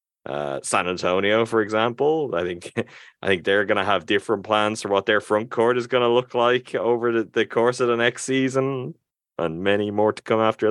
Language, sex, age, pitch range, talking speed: English, male, 30-49, 80-115 Hz, 205 wpm